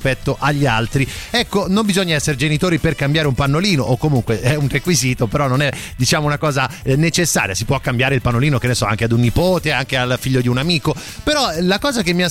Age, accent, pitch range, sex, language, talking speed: 30-49, native, 135-195 Hz, male, Italian, 235 wpm